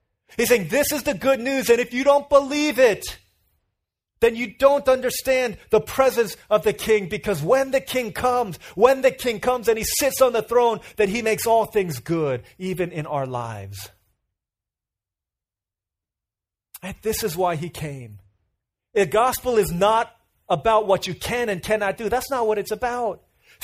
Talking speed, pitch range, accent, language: 180 wpm, 170-245 Hz, American, English